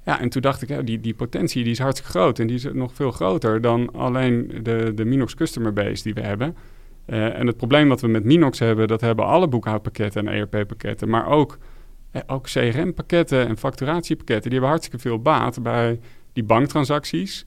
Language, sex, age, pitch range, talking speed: Dutch, male, 40-59, 110-135 Hz, 205 wpm